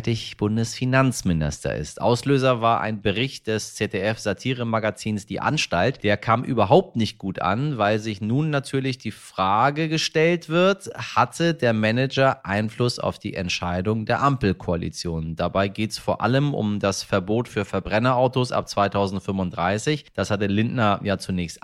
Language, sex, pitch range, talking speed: German, male, 90-125 Hz, 140 wpm